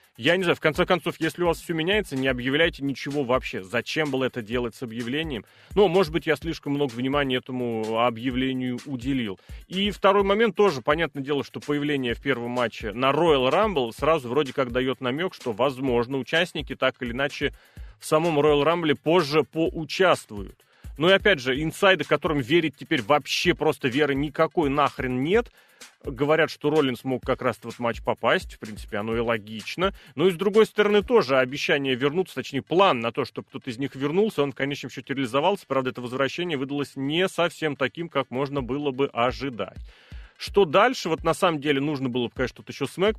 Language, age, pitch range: Russian, 30-49, 130-160 Hz